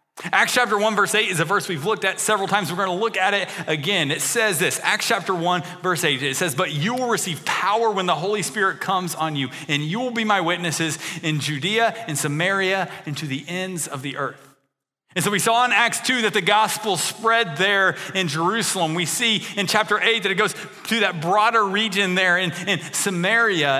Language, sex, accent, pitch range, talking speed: English, male, American, 155-205 Hz, 225 wpm